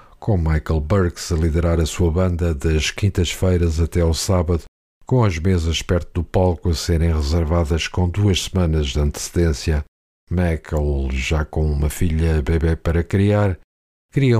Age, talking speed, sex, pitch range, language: 50-69, 150 wpm, male, 80-95 Hz, Portuguese